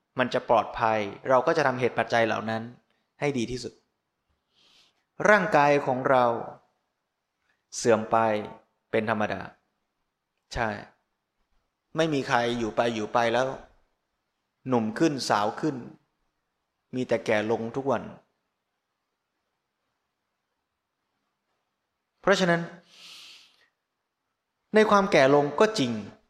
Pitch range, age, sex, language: 115-150 Hz, 20-39, male, Thai